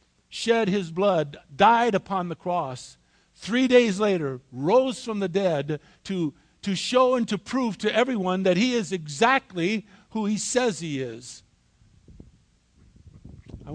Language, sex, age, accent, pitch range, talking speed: English, male, 50-69, American, 150-210 Hz, 140 wpm